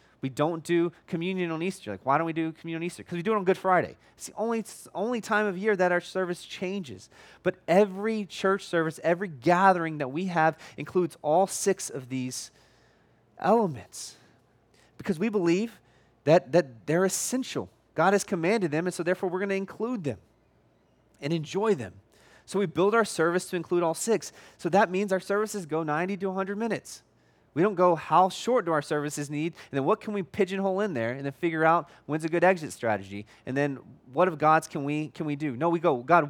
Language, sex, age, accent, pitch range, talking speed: English, male, 30-49, American, 150-195 Hz, 210 wpm